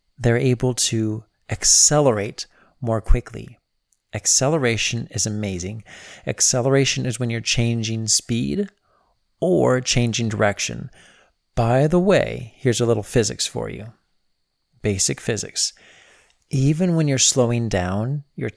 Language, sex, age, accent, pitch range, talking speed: English, male, 40-59, American, 105-130 Hz, 115 wpm